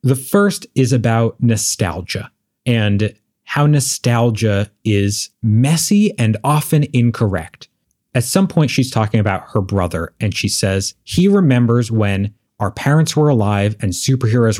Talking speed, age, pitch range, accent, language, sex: 135 wpm, 30-49, 105-135 Hz, American, English, male